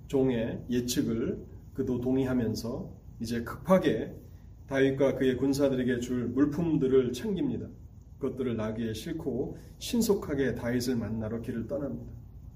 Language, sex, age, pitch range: Korean, male, 30-49, 120-175 Hz